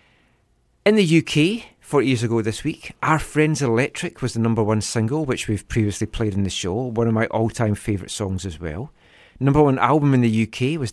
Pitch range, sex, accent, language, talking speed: 105-135 Hz, male, British, English, 210 wpm